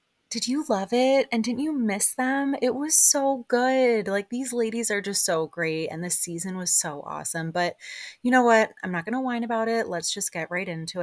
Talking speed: 230 wpm